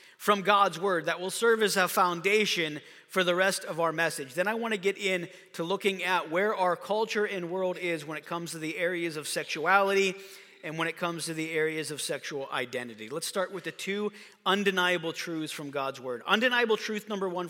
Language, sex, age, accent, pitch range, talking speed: English, male, 40-59, American, 170-220 Hz, 215 wpm